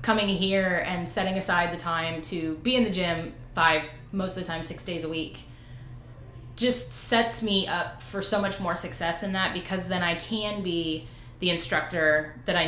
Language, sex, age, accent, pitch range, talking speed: English, female, 20-39, American, 155-190 Hz, 195 wpm